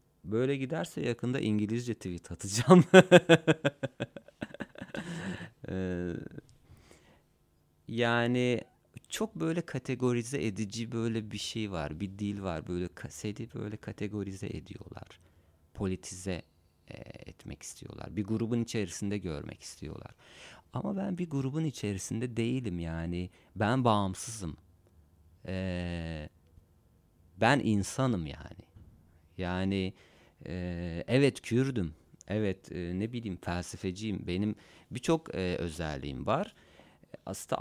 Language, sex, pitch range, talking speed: Turkish, male, 90-120 Hz, 90 wpm